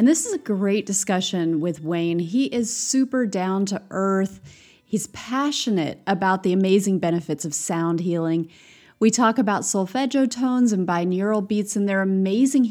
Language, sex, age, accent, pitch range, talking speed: English, female, 30-49, American, 180-235 Hz, 160 wpm